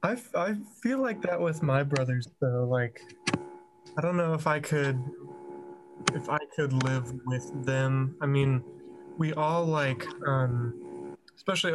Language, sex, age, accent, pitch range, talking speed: English, male, 20-39, American, 130-150 Hz, 150 wpm